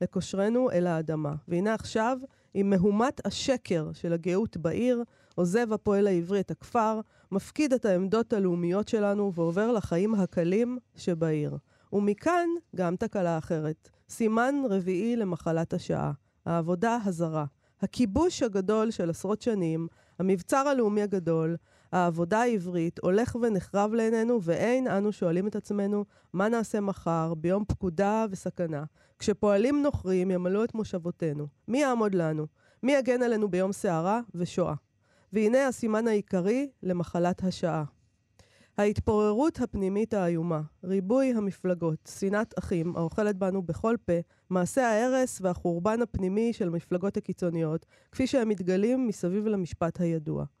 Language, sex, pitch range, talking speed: Hebrew, female, 170-220 Hz, 120 wpm